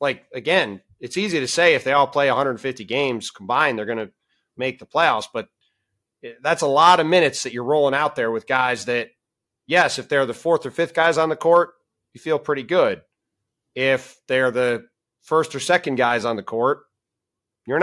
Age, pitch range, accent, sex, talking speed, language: 30-49, 115-140 Hz, American, male, 200 wpm, English